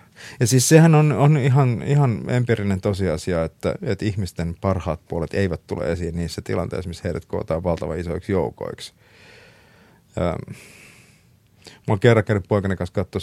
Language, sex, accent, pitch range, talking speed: Finnish, male, native, 90-110 Hz, 150 wpm